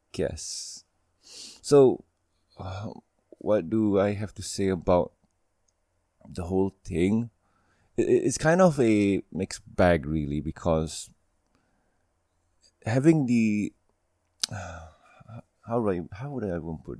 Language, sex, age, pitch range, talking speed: English, male, 20-39, 85-105 Hz, 110 wpm